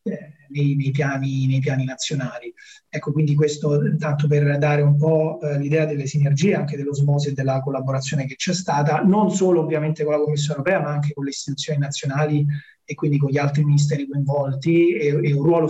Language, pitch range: Italian, 135-155 Hz